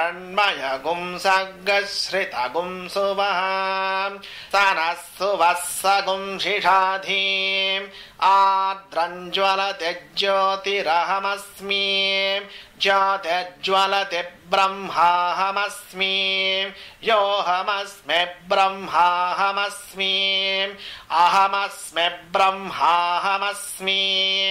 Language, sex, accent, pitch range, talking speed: Hindi, male, native, 185-195 Hz, 30 wpm